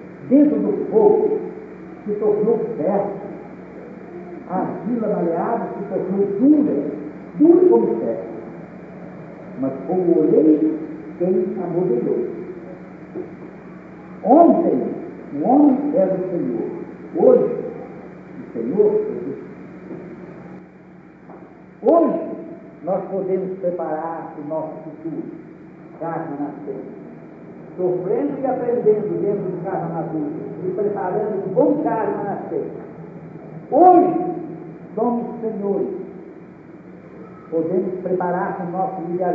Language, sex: Portuguese, male